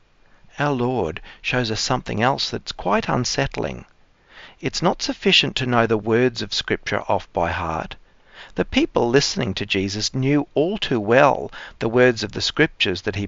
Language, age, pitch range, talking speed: English, 50-69, 105-140 Hz, 165 wpm